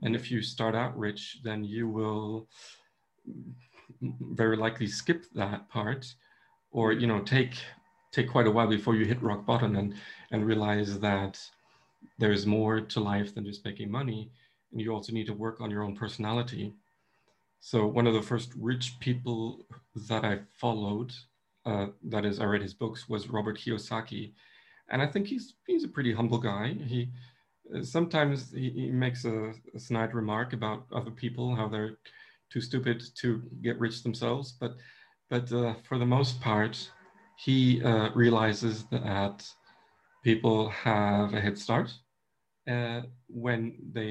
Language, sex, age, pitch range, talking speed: English, male, 40-59, 105-120 Hz, 160 wpm